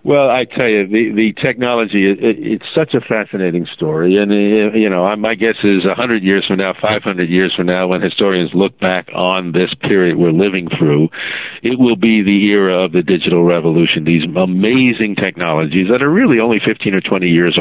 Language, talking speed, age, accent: English, 210 wpm, 50-69, American